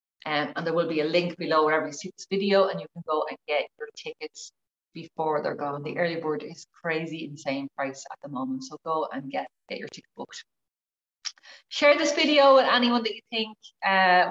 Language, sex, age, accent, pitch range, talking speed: English, female, 30-49, Irish, 160-210 Hz, 215 wpm